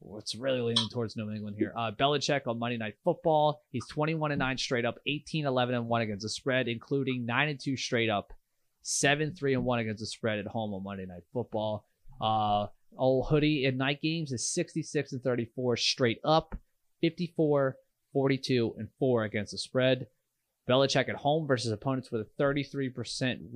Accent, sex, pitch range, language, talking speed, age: American, male, 115-145 Hz, English, 185 wpm, 30-49